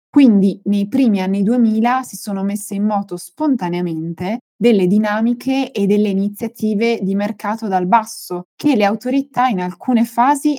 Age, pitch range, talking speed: 20-39, 185-230 Hz, 145 wpm